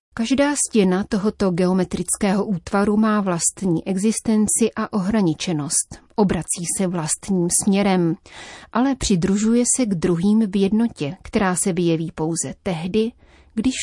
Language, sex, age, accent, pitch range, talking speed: Czech, female, 30-49, native, 180-215 Hz, 115 wpm